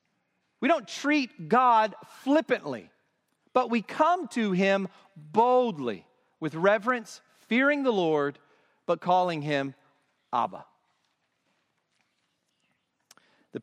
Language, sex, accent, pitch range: English, male, American, 180-260 Hz